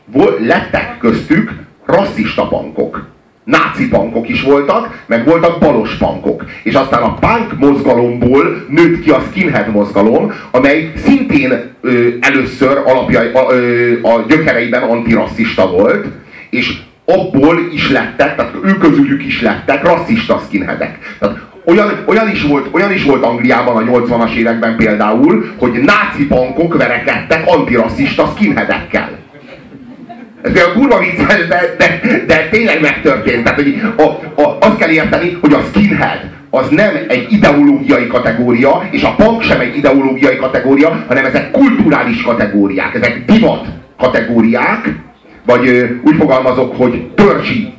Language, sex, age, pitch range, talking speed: Hungarian, male, 40-59, 120-195 Hz, 130 wpm